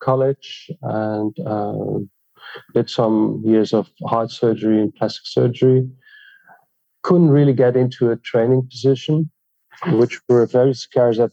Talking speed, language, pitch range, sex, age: 125 wpm, English, 105-130 Hz, male, 40-59